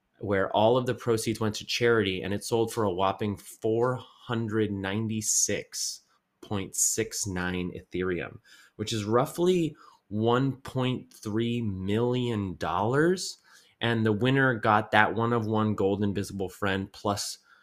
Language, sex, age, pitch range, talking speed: English, male, 20-39, 100-120 Hz, 115 wpm